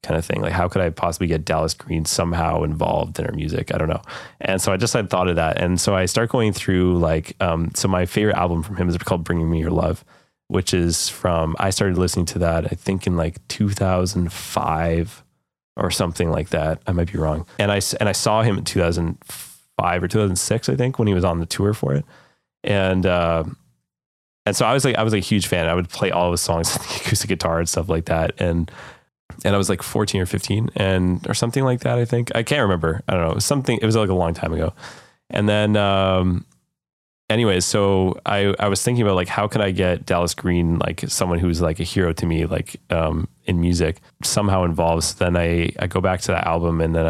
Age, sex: 20-39, male